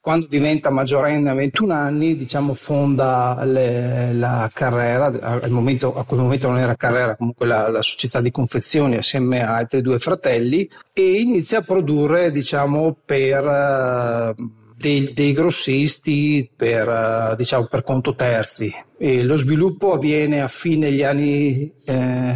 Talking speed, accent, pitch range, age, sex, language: 125 wpm, native, 130-150 Hz, 40-59, male, Italian